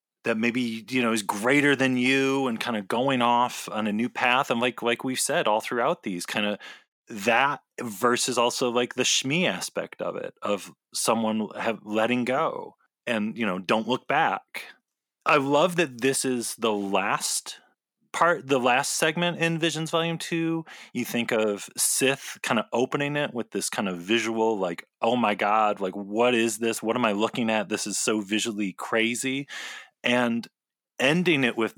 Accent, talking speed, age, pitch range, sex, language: American, 185 wpm, 30-49, 105-135 Hz, male, English